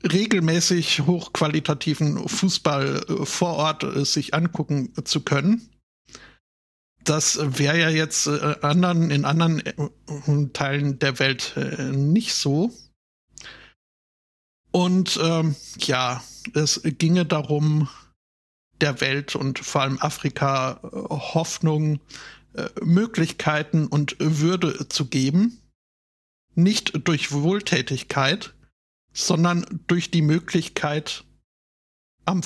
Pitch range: 140-175 Hz